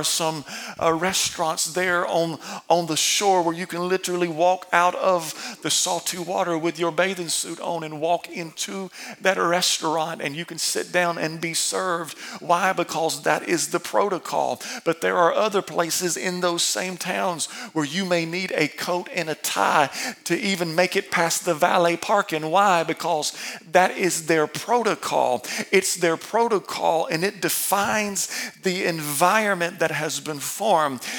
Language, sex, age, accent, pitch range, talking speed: English, male, 40-59, American, 165-195 Hz, 165 wpm